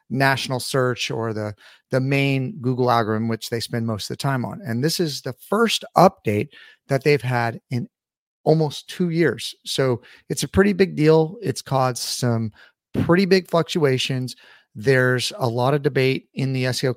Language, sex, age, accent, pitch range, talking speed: English, male, 30-49, American, 120-155 Hz, 175 wpm